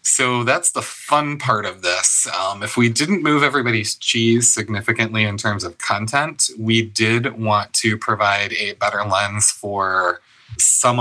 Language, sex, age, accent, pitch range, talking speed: English, male, 30-49, American, 105-125 Hz, 160 wpm